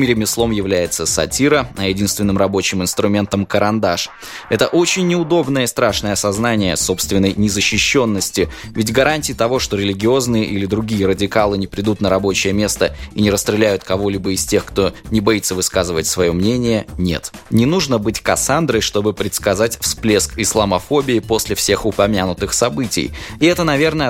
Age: 20-39